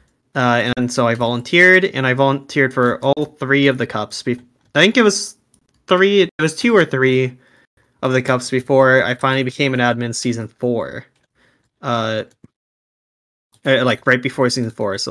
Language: English